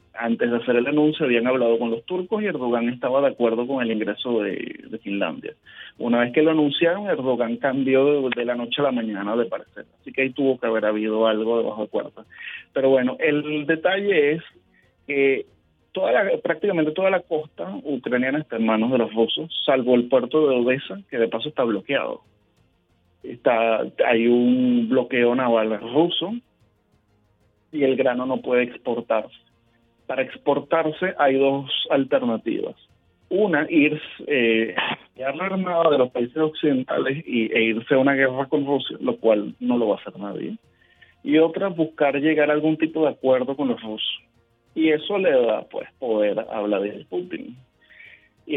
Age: 30-49